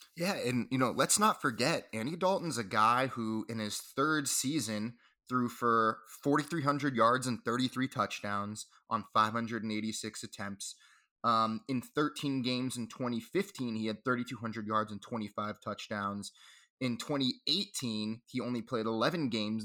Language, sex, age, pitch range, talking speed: English, male, 20-39, 105-130 Hz, 175 wpm